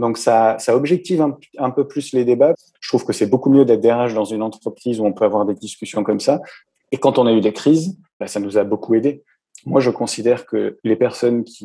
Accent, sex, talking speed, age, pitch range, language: French, male, 250 wpm, 30-49, 105-130 Hz, French